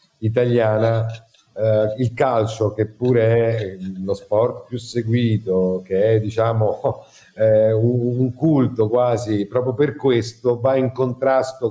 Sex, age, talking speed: male, 50-69, 130 wpm